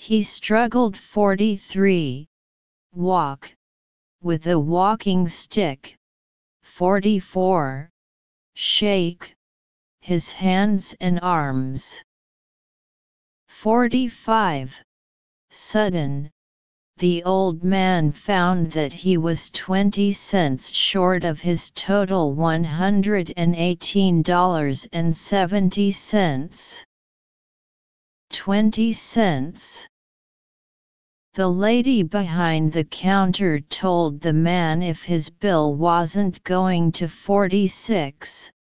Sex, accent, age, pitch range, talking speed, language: female, American, 40-59, 155-200 Hz, 75 wpm, English